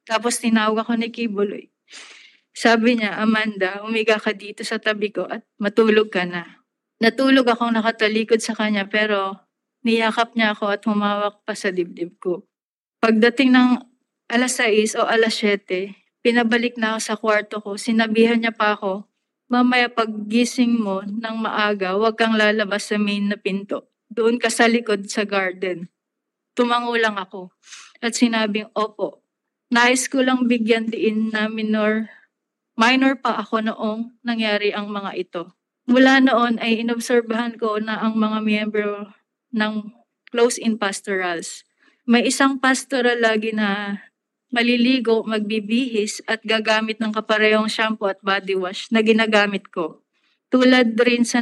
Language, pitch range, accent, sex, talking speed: Filipino, 210-235 Hz, native, female, 140 wpm